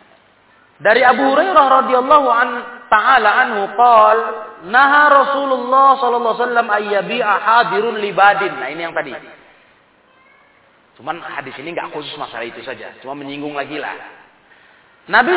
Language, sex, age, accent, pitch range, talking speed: Indonesian, male, 30-49, native, 165-255 Hz, 100 wpm